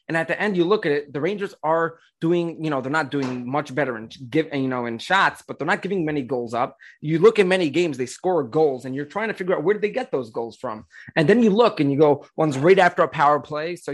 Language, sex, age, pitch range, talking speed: English, male, 20-39, 140-185 Hz, 290 wpm